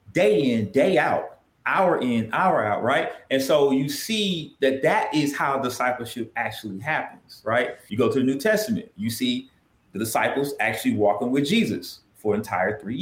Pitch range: 115-145 Hz